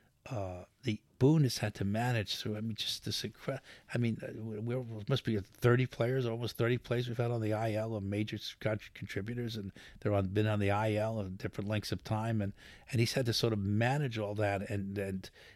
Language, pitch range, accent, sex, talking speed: English, 100-115 Hz, American, male, 215 wpm